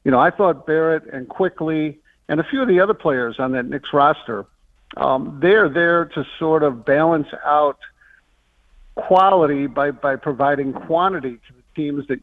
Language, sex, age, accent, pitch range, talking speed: English, male, 50-69, American, 135-165 Hz, 170 wpm